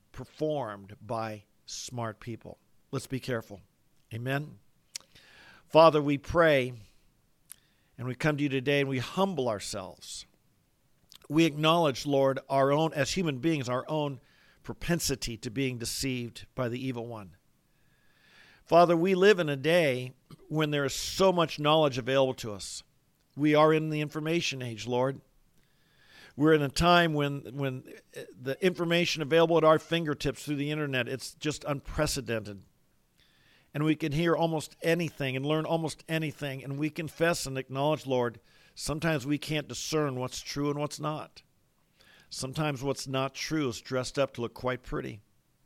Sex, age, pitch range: male, 50-69, 130-155 Hz